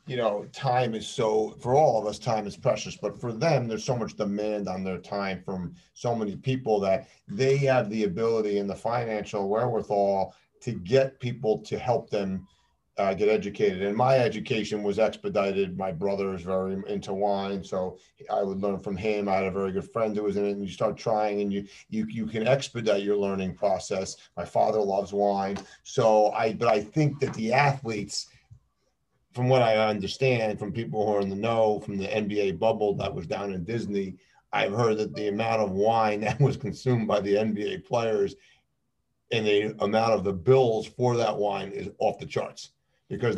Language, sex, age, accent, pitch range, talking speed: English, male, 40-59, American, 100-115 Hz, 200 wpm